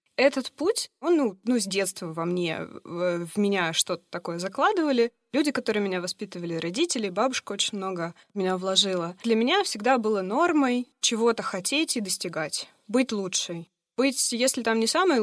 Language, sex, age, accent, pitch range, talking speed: Russian, female, 20-39, native, 190-250 Hz, 160 wpm